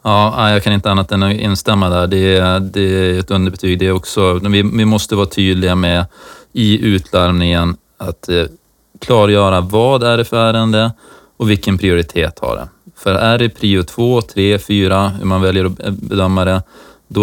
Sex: male